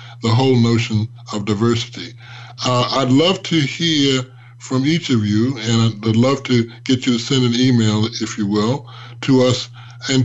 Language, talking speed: English, 175 wpm